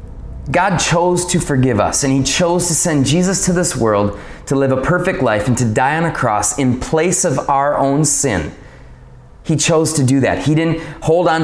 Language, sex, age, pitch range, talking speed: English, male, 20-39, 105-155 Hz, 210 wpm